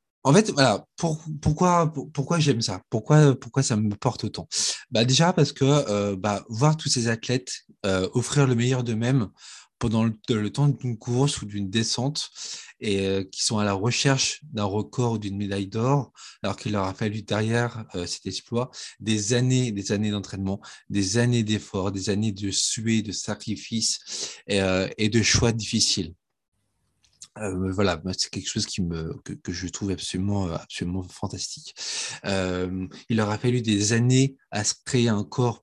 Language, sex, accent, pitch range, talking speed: French, male, French, 100-125 Hz, 180 wpm